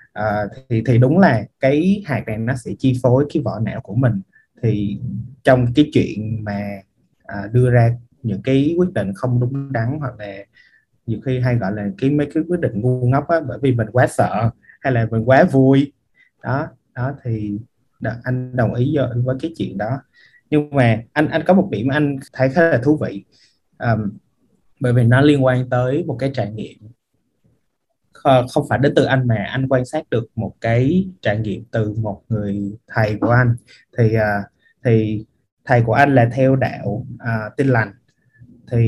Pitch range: 110-140 Hz